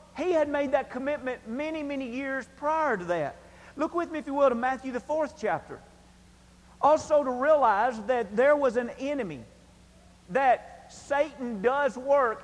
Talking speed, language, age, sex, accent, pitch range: 165 wpm, English, 40-59, male, American, 215-265 Hz